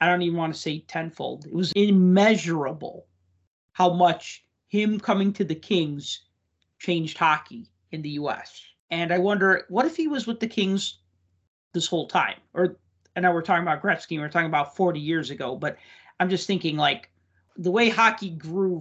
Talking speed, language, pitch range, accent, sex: 180 wpm, English, 150-185 Hz, American, male